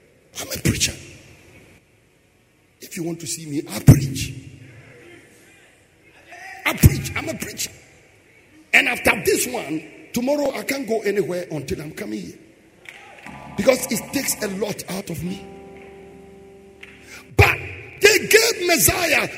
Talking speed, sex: 125 wpm, male